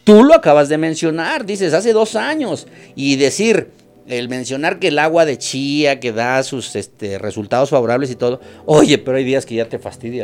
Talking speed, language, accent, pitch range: 200 wpm, Spanish, Mexican, 130-195 Hz